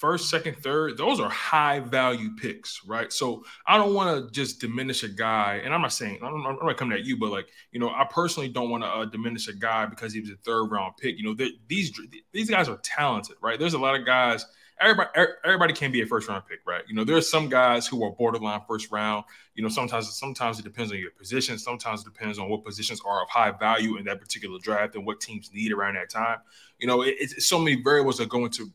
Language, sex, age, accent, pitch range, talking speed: English, male, 20-39, American, 110-140 Hz, 255 wpm